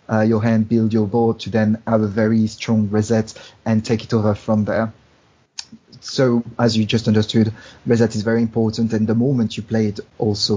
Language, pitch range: English, 110-120 Hz